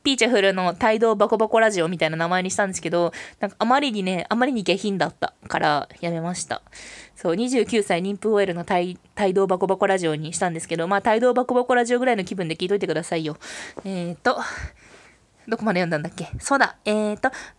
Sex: female